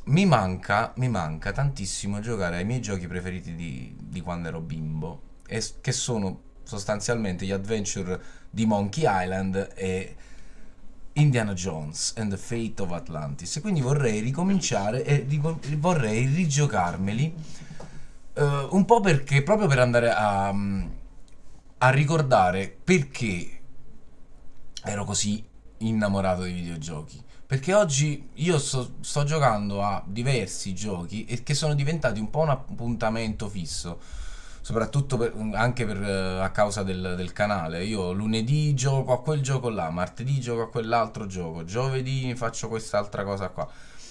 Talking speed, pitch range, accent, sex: 130 wpm, 95-135 Hz, native, male